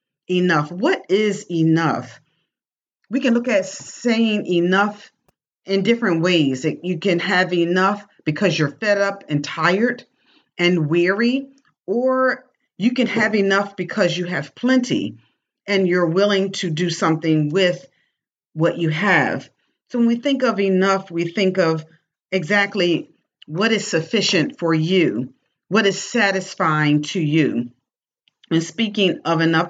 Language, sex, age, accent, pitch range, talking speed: English, female, 40-59, American, 165-205 Hz, 135 wpm